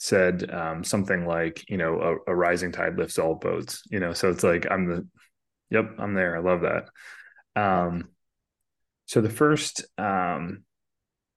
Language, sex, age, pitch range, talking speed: English, male, 30-49, 90-110 Hz, 170 wpm